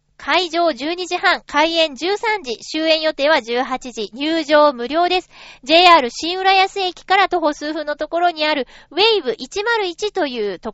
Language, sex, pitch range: Japanese, female, 240-340 Hz